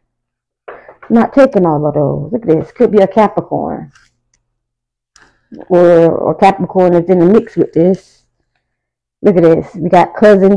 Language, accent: English, American